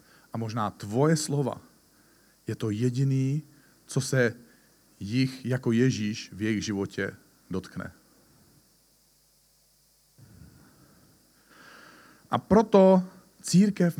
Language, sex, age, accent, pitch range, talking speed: Czech, male, 40-59, native, 105-140 Hz, 80 wpm